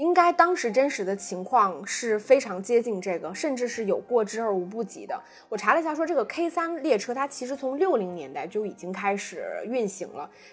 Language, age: Chinese, 20-39